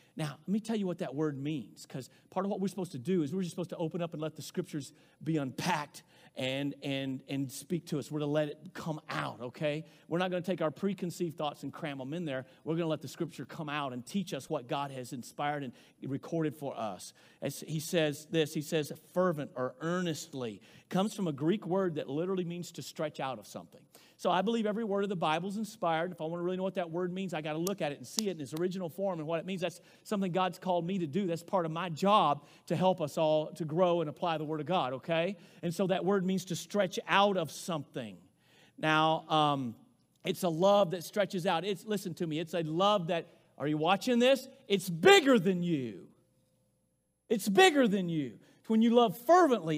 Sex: male